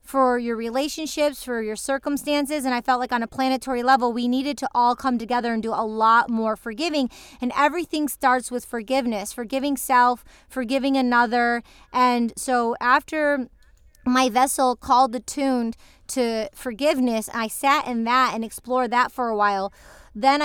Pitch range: 230-265 Hz